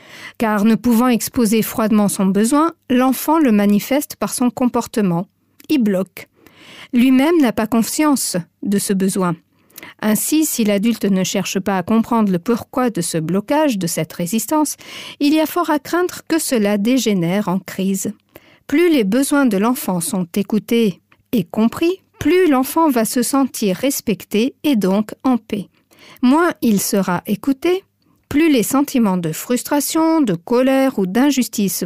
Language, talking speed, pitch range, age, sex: French, 155 wpm, 200-270 Hz, 50-69, female